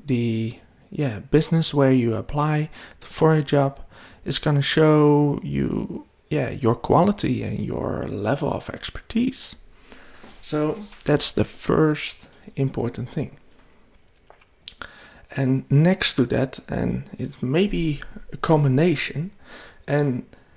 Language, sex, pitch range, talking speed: English, male, 120-155 Hz, 115 wpm